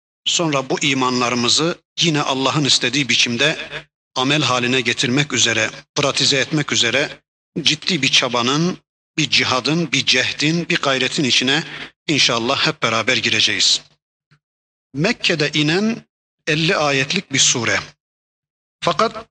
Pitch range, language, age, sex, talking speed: 130-175 Hz, Turkish, 50-69, male, 110 wpm